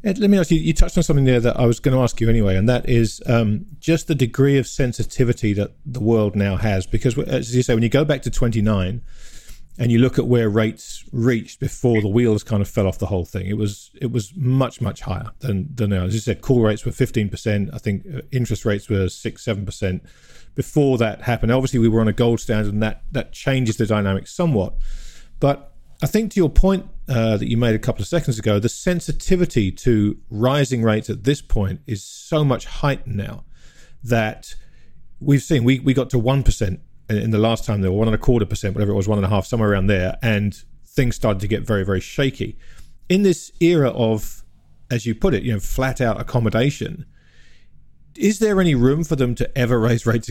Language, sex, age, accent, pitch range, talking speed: English, male, 40-59, British, 105-135 Hz, 225 wpm